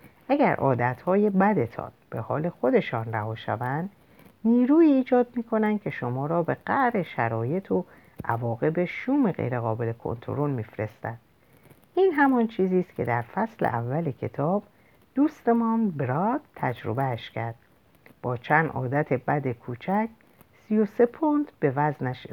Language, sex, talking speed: Persian, female, 125 wpm